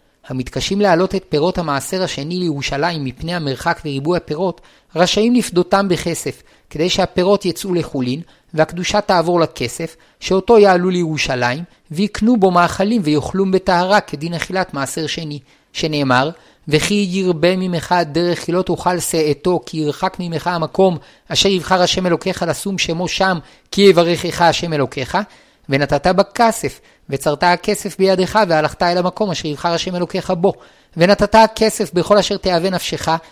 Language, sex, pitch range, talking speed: Hebrew, male, 155-190 Hz, 135 wpm